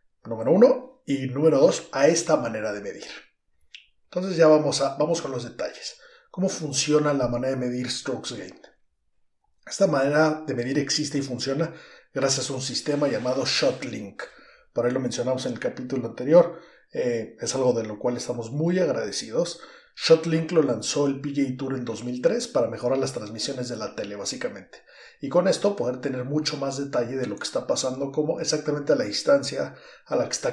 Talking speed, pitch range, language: 185 wpm, 125-160 Hz, Spanish